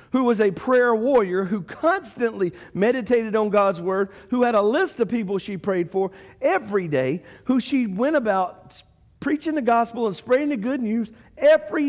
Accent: American